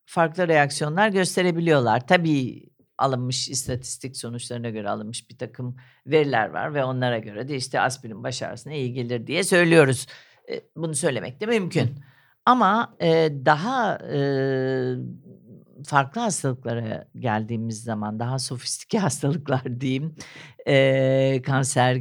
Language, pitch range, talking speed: Turkish, 120-155 Hz, 110 wpm